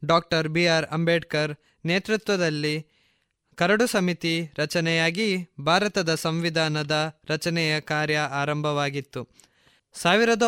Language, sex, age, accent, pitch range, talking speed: Kannada, male, 20-39, native, 155-185 Hz, 75 wpm